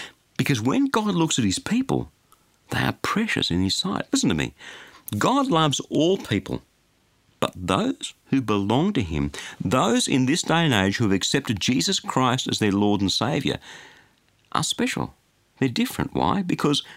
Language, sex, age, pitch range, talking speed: English, male, 50-69, 95-140 Hz, 170 wpm